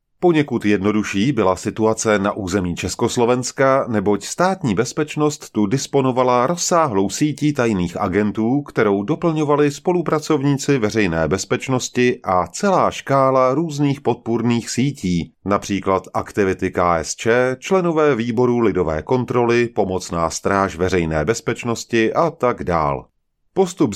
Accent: Czech